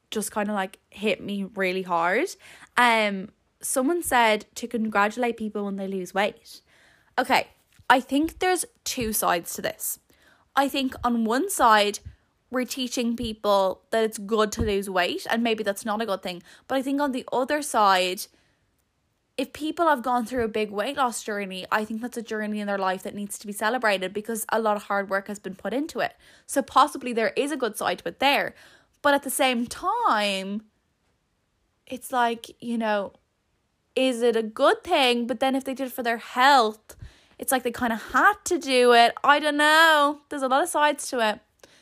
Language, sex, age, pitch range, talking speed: English, female, 10-29, 215-270 Hz, 200 wpm